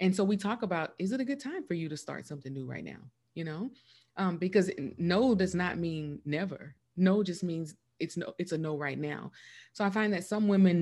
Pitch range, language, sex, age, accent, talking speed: 165-215 Hz, English, female, 30-49, American, 240 wpm